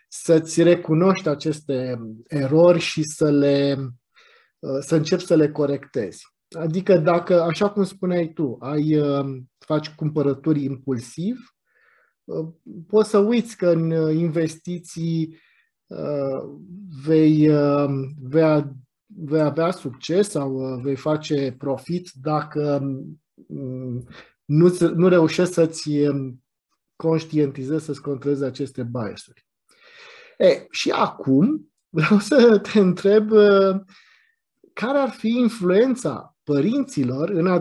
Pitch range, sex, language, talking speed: 145-185 Hz, male, Romanian, 95 wpm